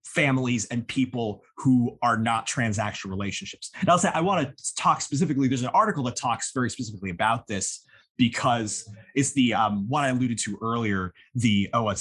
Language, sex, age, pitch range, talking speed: English, male, 30-49, 110-145 Hz, 175 wpm